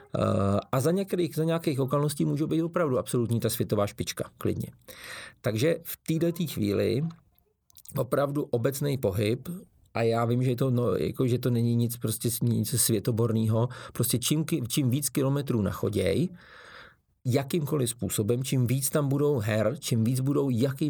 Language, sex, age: Czech, male, 40-59